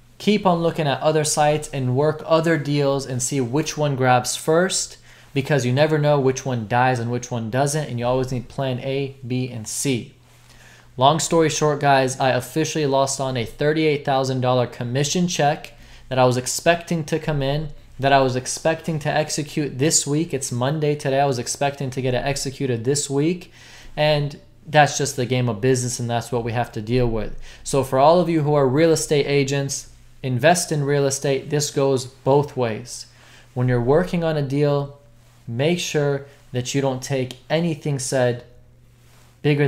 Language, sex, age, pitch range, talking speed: English, male, 20-39, 125-150 Hz, 185 wpm